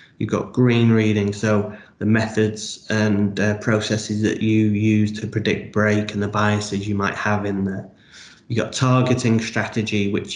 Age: 20-39